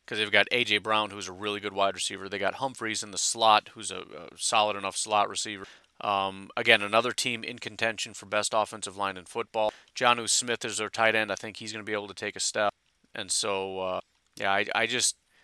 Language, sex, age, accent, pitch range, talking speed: English, male, 30-49, American, 95-115 Hz, 235 wpm